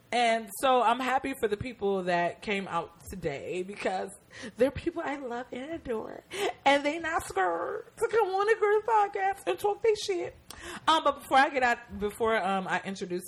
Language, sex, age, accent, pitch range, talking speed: English, female, 20-39, American, 160-215 Hz, 190 wpm